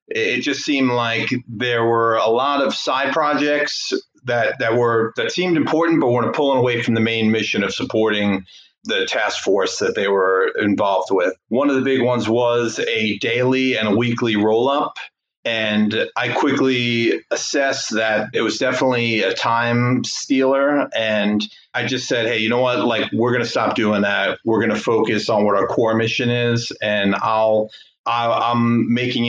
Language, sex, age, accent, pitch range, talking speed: English, male, 40-59, American, 110-125 Hz, 180 wpm